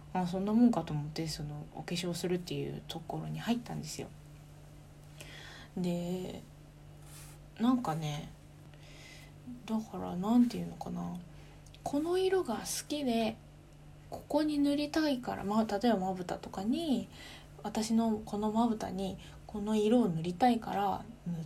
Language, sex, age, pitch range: Japanese, female, 20-39, 160-225 Hz